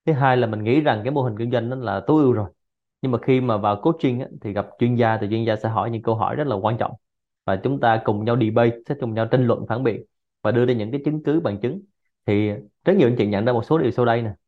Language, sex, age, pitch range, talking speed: Vietnamese, male, 20-39, 110-135 Hz, 305 wpm